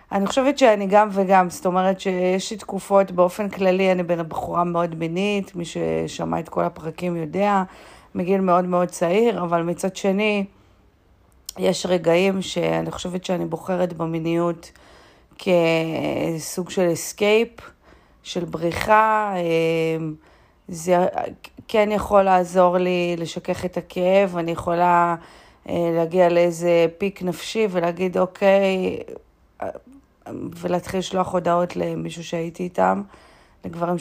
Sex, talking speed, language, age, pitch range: female, 115 wpm, Hebrew, 40-59, 165-185 Hz